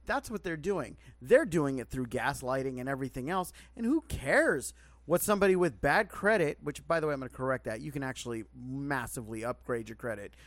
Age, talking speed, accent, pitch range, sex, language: 30-49, 205 wpm, American, 125-185 Hz, male, English